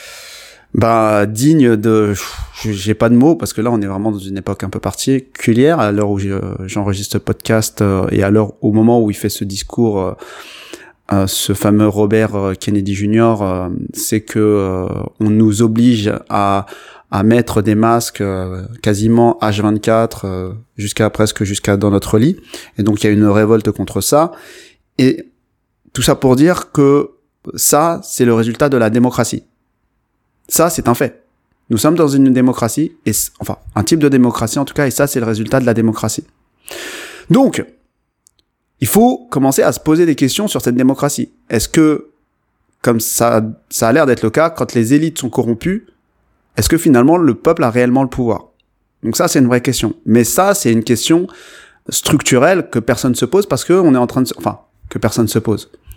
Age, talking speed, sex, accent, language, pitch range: 20-39, 185 wpm, male, French, French, 105-130 Hz